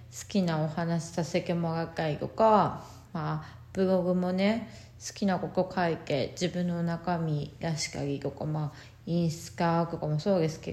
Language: Japanese